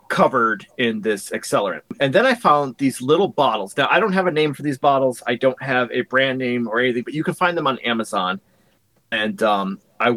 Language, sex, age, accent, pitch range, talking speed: English, male, 30-49, American, 115-150 Hz, 225 wpm